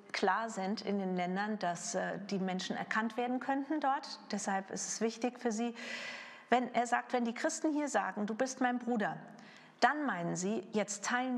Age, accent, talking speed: 40-59, German, 185 wpm